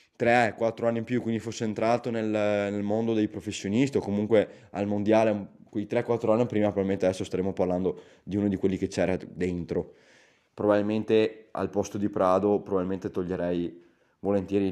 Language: Italian